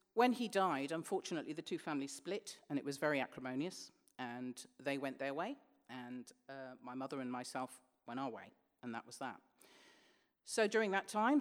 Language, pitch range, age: English, 140-195 Hz, 40-59